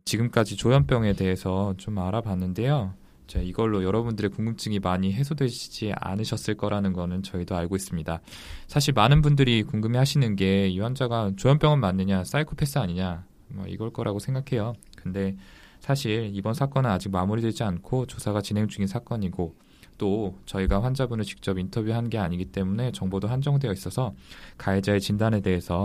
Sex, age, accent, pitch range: male, 20-39, native, 95-115 Hz